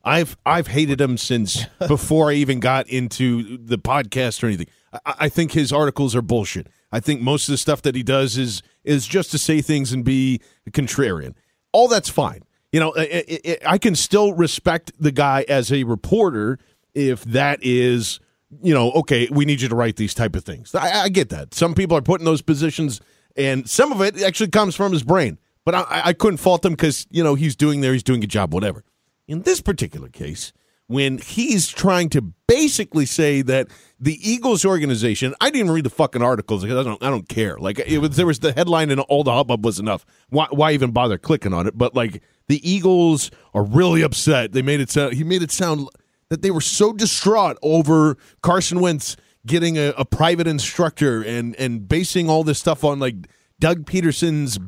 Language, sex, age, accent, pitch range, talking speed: English, male, 40-59, American, 125-165 Hz, 205 wpm